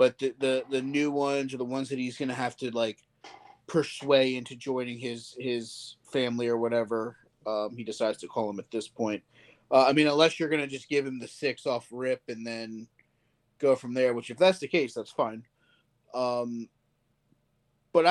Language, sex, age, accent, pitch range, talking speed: English, male, 30-49, American, 115-135 Hz, 200 wpm